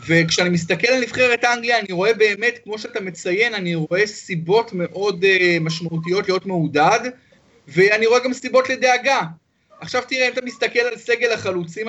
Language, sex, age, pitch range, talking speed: Hebrew, male, 30-49, 175-225 Hz, 160 wpm